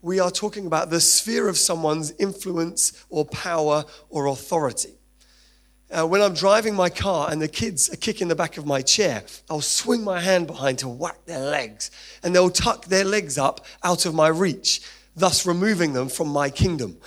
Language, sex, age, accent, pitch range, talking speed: English, male, 30-49, British, 155-195 Hz, 190 wpm